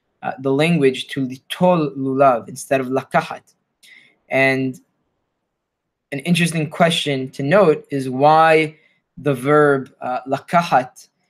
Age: 20-39